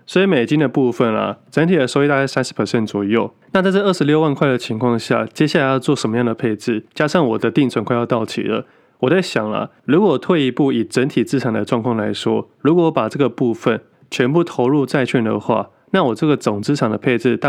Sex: male